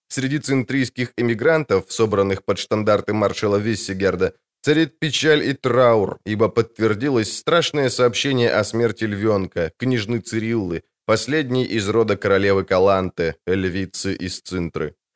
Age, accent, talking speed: 20-39, native, 115 wpm